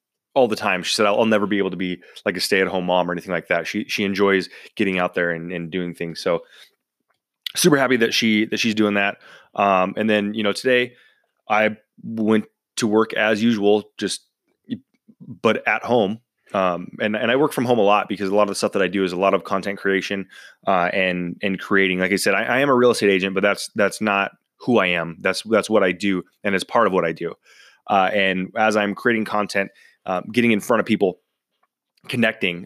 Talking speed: 230 wpm